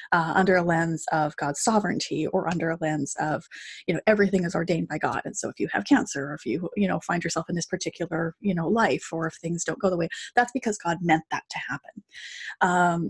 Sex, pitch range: female, 170-205 Hz